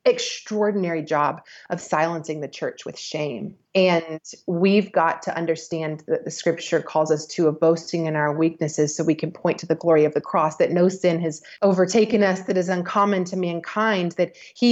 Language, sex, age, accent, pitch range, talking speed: English, female, 30-49, American, 175-215 Hz, 190 wpm